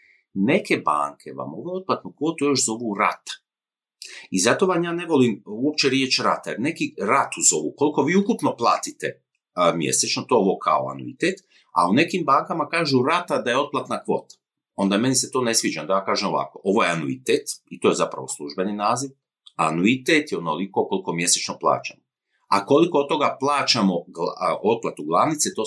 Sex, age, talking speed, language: male, 50-69, 180 wpm, Croatian